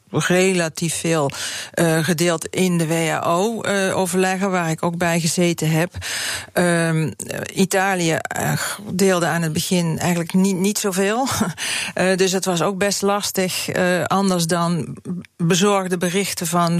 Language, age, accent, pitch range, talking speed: Dutch, 40-59, Dutch, 165-190 Hz, 130 wpm